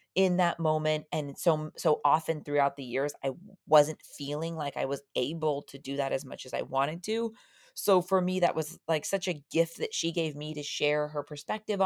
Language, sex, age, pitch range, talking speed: English, female, 30-49, 150-190 Hz, 220 wpm